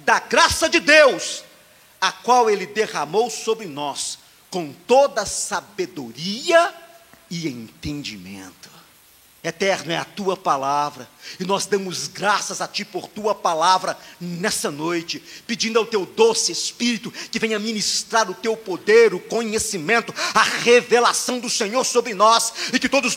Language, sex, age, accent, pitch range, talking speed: Portuguese, male, 50-69, Brazilian, 205-280 Hz, 135 wpm